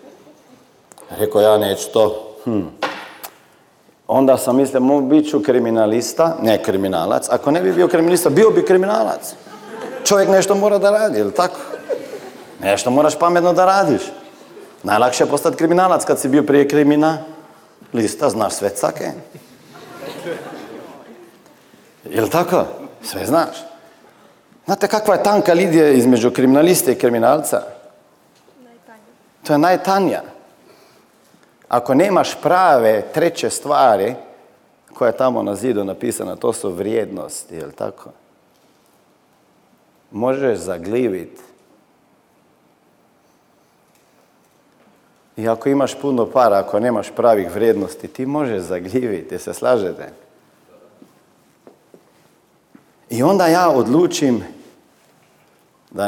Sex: male